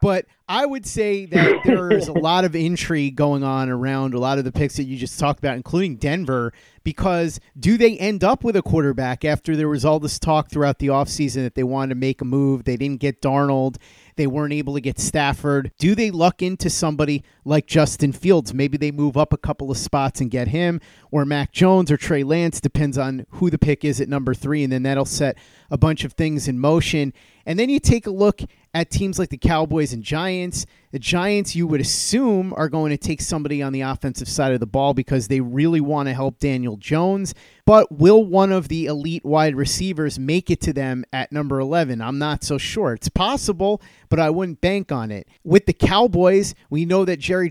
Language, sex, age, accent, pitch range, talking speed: English, male, 30-49, American, 135-170 Hz, 220 wpm